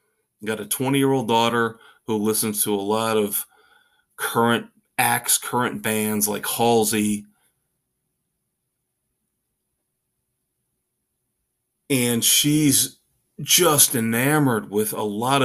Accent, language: American, English